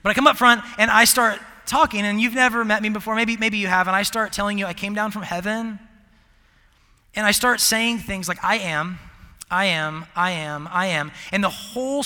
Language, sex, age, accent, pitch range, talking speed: English, male, 30-49, American, 165-220 Hz, 230 wpm